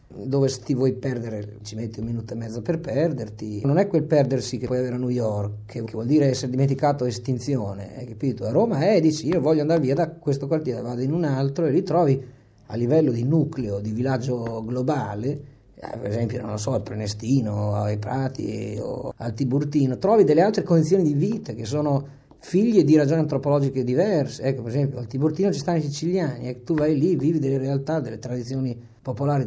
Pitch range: 120-150 Hz